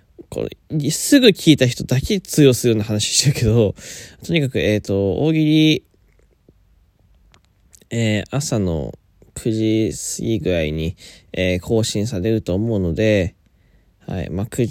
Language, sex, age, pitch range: Japanese, male, 20-39, 95-135 Hz